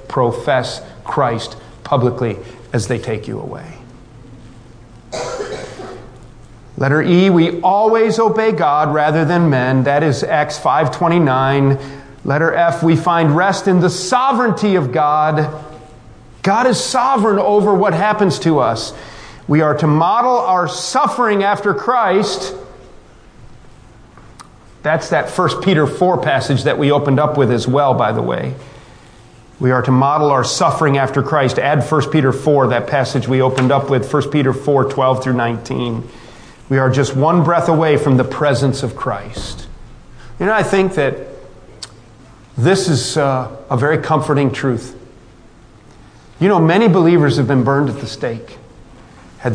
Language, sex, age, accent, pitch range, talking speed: English, male, 40-59, American, 125-165 Hz, 150 wpm